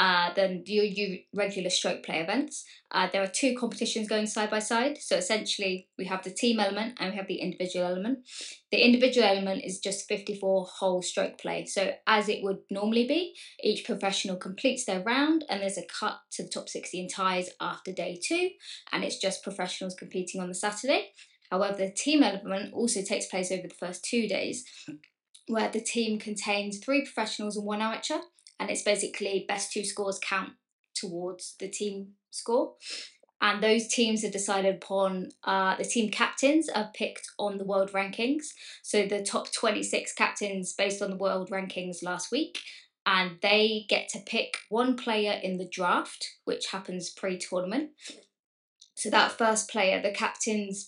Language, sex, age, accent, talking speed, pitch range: English, female, 20-39, British, 175 wpm, 190-235 Hz